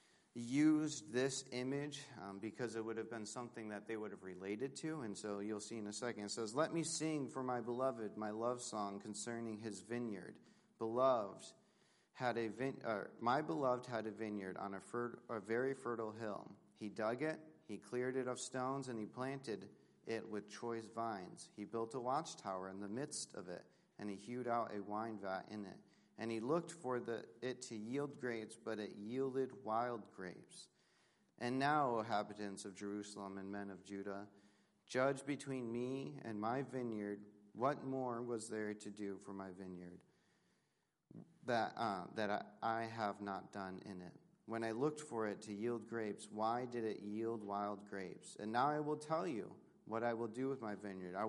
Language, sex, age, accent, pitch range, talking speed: English, male, 40-59, American, 105-125 Hz, 185 wpm